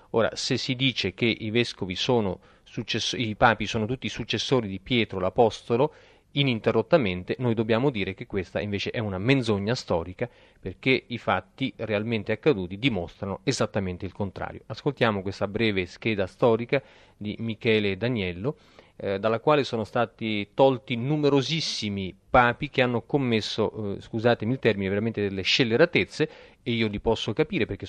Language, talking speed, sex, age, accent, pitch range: Italian, 150 wpm, male, 40-59, native, 105-130 Hz